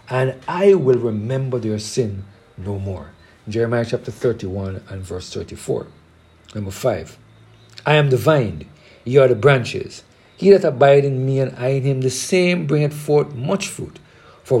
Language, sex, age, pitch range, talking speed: English, male, 50-69, 105-150 Hz, 165 wpm